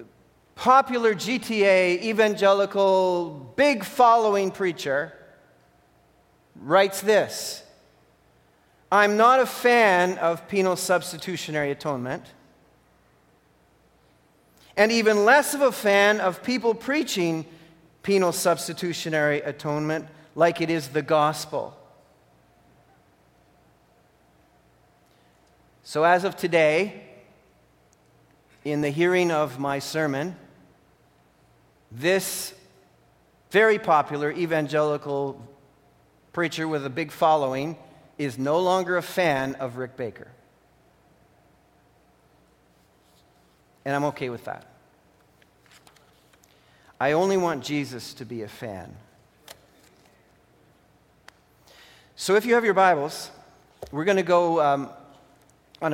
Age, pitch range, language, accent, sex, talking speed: 40-59, 135-185 Hz, English, American, male, 90 wpm